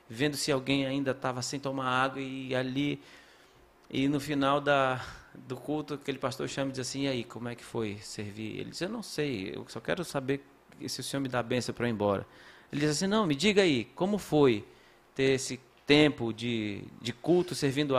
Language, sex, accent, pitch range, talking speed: Portuguese, male, Brazilian, 120-150 Hz, 210 wpm